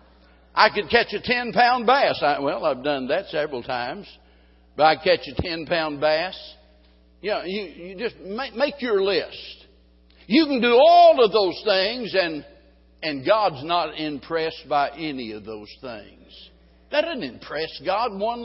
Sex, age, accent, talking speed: male, 60-79, American, 165 wpm